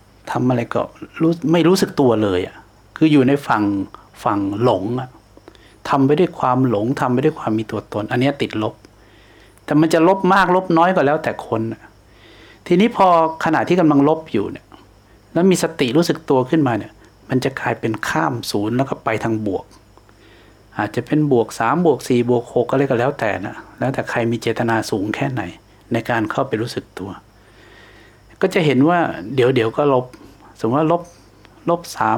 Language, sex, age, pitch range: English, male, 60-79, 110-165 Hz